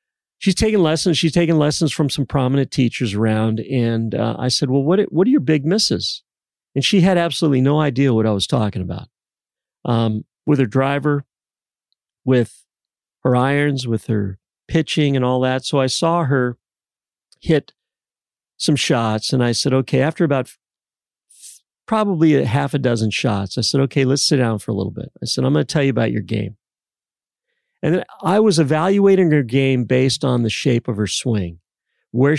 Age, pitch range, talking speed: 40-59, 115-150 Hz, 185 wpm